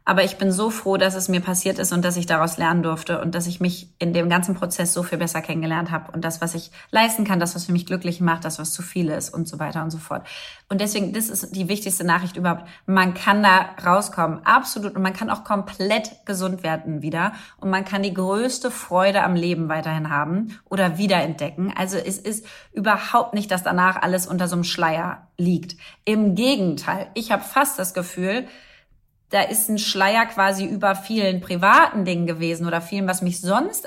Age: 30-49